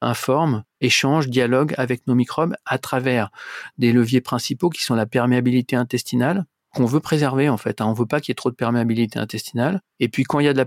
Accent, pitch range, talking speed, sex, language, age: French, 120-140 Hz, 220 wpm, male, French, 40-59